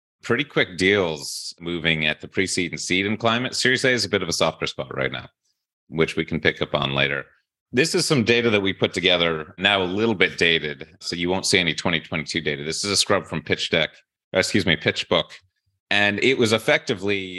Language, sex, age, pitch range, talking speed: English, male, 30-49, 80-100 Hz, 215 wpm